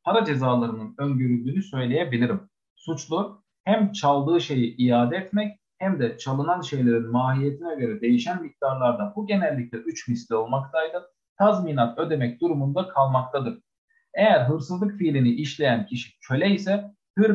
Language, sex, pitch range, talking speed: Turkish, male, 120-180 Hz, 120 wpm